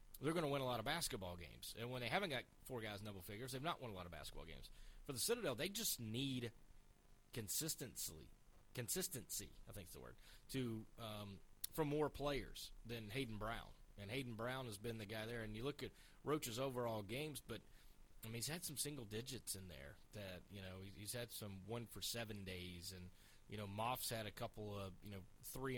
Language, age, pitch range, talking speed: English, 30-49, 100-125 Hz, 215 wpm